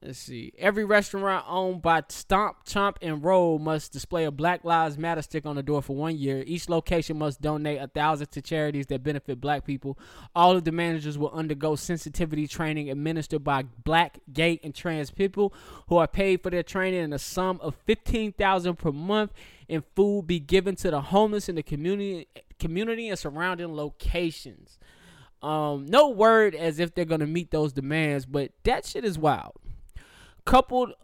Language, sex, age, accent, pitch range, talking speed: English, male, 20-39, American, 150-190 Hz, 180 wpm